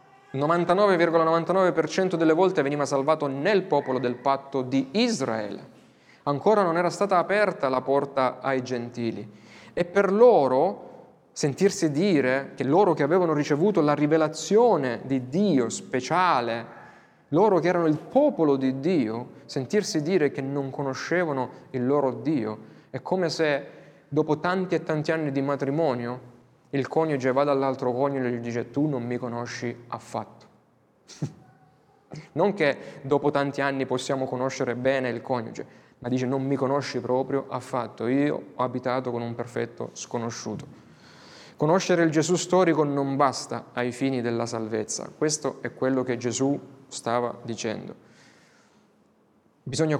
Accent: native